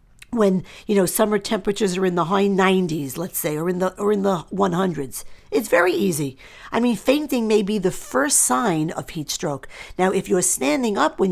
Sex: female